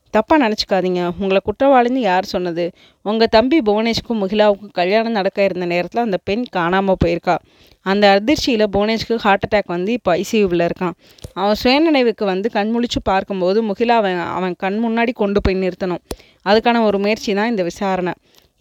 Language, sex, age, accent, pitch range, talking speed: Tamil, female, 20-39, native, 185-225 Hz, 140 wpm